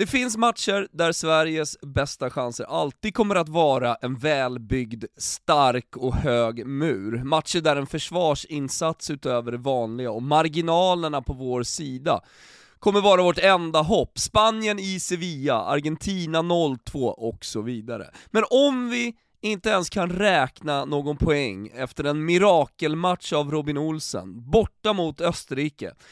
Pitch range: 130-200 Hz